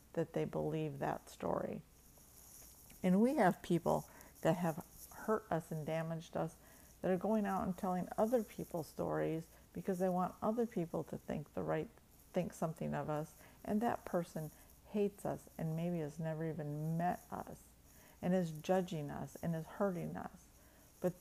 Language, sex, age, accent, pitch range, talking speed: English, female, 50-69, American, 150-180 Hz, 165 wpm